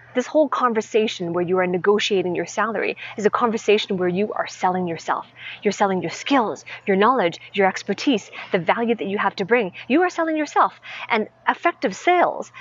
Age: 30-49